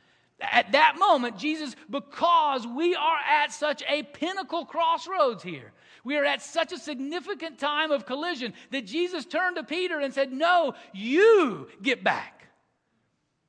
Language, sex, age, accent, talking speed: English, male, 40-59, American, 145 wpm